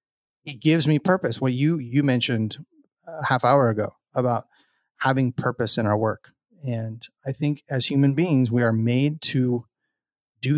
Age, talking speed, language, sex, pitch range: 30-49, 170 wpm, English, male, 125-145 Hz